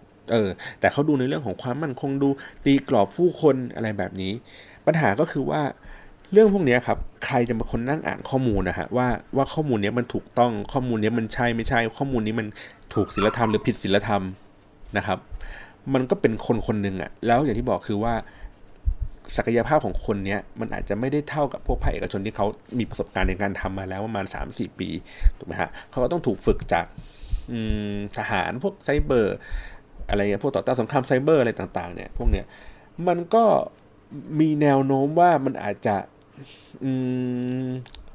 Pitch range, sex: 100-130 Hz, male